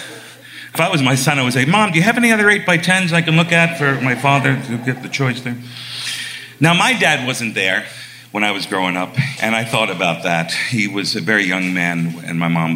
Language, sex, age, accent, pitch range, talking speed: English, male, 40-59, American, 115-170 Hz, 250 wpm